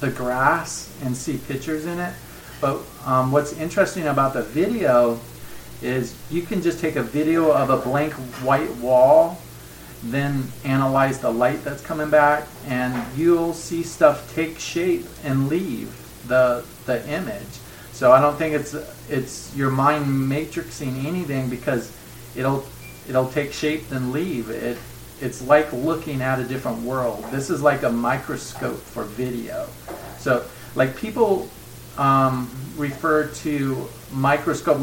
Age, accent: 40-59, American